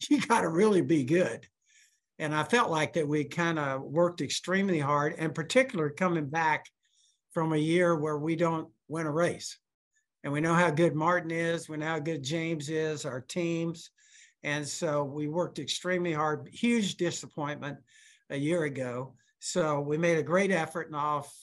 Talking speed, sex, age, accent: 180 wpm, male, 60-79, American